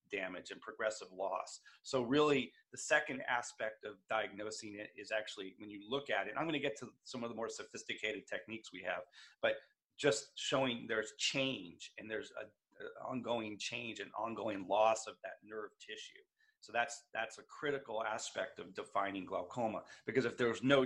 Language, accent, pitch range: English, American, 110-140 Hz